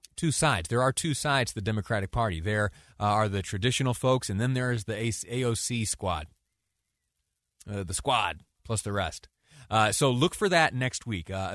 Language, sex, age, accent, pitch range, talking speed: English, male, 30-49, American, 95-130 Hz, 185 wpm